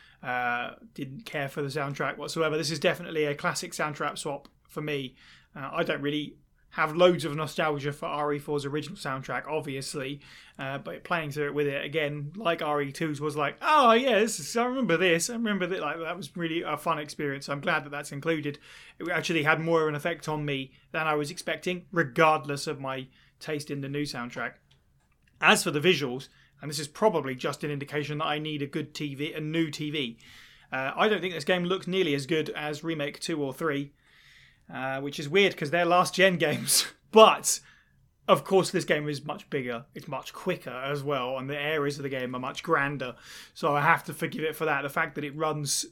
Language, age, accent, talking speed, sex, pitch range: English, 20-39, British, 210 wpm, male, 140-165 Hz